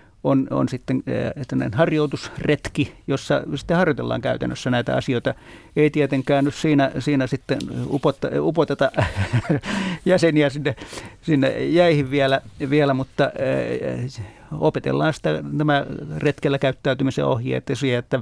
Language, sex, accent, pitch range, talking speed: Finnish, male, native, 130-150 Hz, 100 wpm